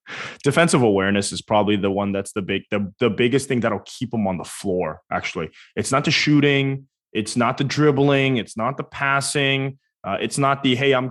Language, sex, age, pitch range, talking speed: English, male, 20-39, 105-140 Hz, 205 wpm